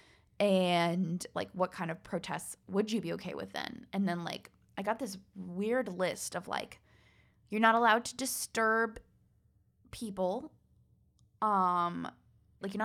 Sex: female